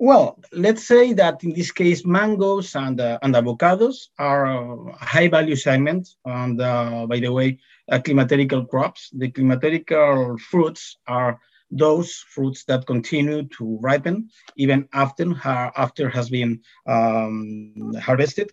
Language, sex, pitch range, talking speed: English, male, 120-150 Hz, 125 wpm